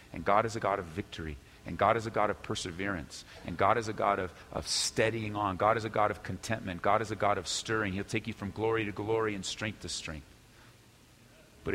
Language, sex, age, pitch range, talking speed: English, male, 40-59, 95-115 Hz, 240 wpm